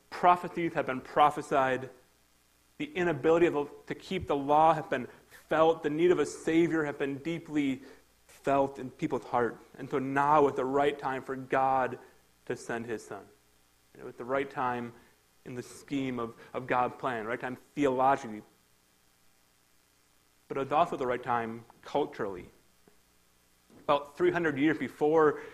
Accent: American